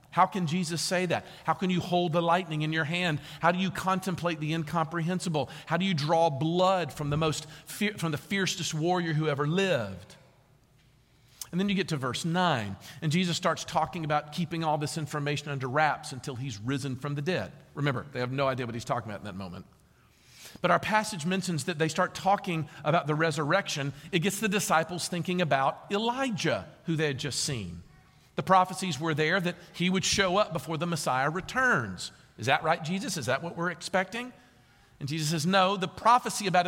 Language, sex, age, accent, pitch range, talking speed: English, male, 50-69, American, 145-185 Hz, 200 wpm